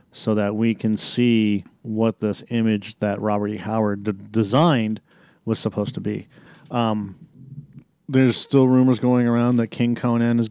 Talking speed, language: 160 wpm, English